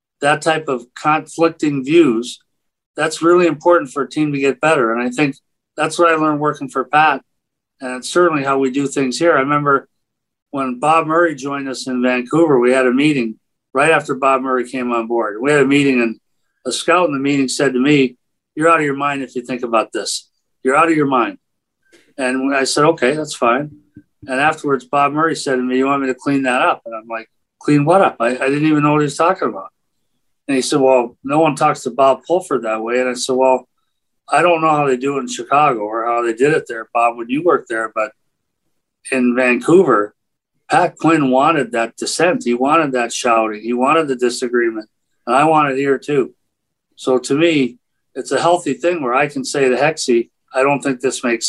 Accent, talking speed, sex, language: American, 225 wpm, male, English